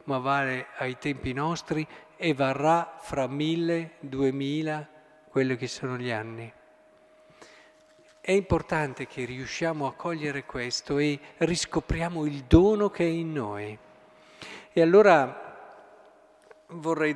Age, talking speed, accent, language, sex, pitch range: 50-69, 115 wpm, native, Italian, male, 135-180 Hz